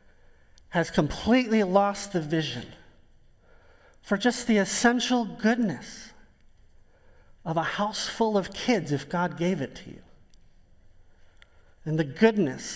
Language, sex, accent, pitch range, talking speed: English, male, American, 140-235 Hz, 120 wpm